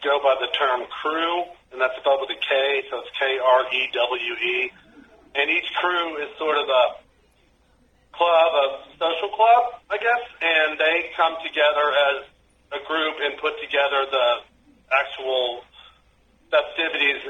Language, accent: English, American